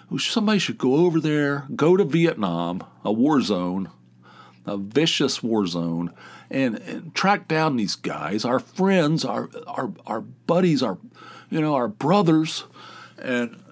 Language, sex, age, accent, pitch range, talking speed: English, male, 50-69, American, 105-155 Hz, 145 wpm